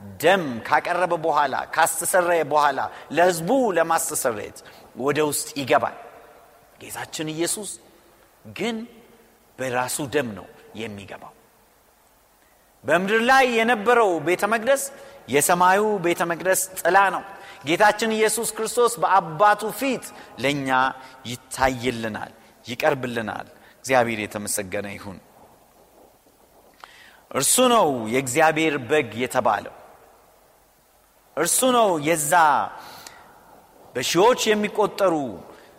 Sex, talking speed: male, 80 wpm